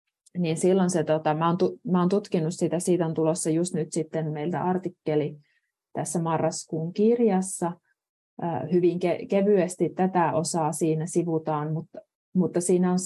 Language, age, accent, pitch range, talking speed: Finnish, 30-49, native, 150-180 Hz, 125 wpm